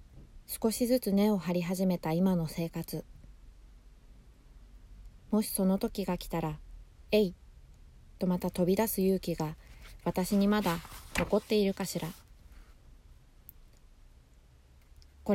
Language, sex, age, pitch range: Japanese, female, 20-39, 150-200 Hz